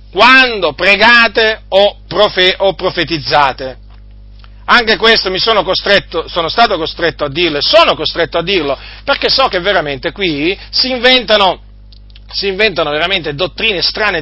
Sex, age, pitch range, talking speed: male, 40-59, 155-230 Hz, 140 wpm